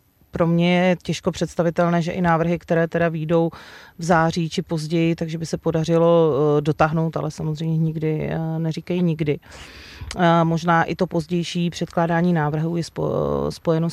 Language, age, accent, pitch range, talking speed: Czech, 30-49, native, 160-180 Hz, 140 wpm